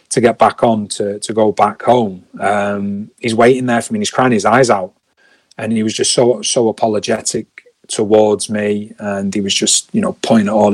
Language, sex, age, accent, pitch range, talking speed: English, male, 30-49, British, 105-120 Hz, 220 wpm